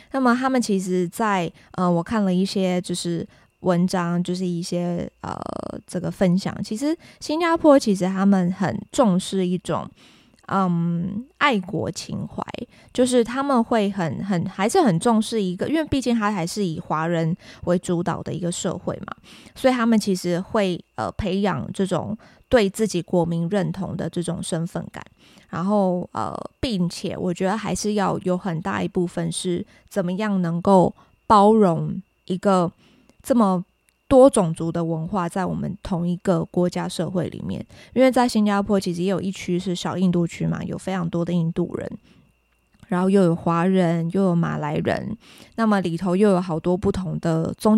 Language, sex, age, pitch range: Chinese, female, 20-39, 175-205 Hz